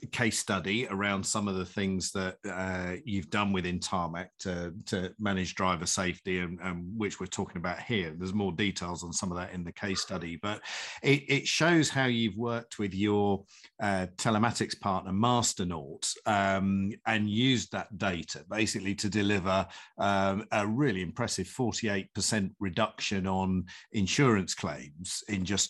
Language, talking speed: English, 160 wpm